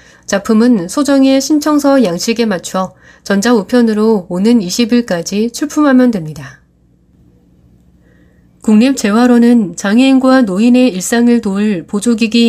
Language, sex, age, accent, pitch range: Korean, female, 30-49, native, 195-250 Hz